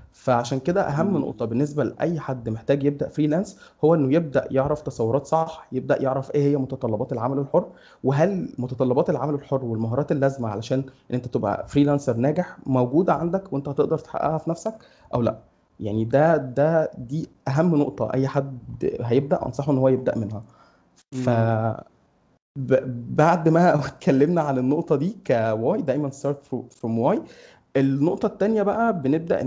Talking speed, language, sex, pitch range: 150 wpm, Arabic, male, 125-155 Hz